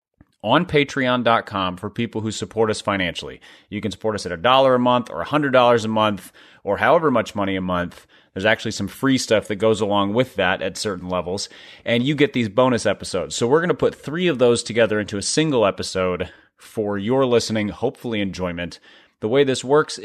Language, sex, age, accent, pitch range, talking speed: English, male, 30-49, American, 100-130 Hz, 210 wpm